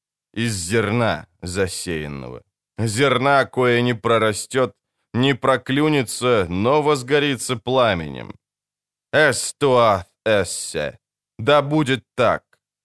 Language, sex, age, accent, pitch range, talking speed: Ukrainian, male, 20-39, native, 105-130 Hz, 75 wpm